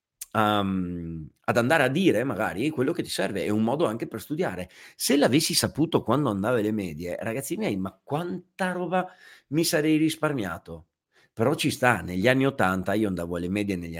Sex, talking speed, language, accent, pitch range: male, 175 wpm, Italian, native, 90-120 Hz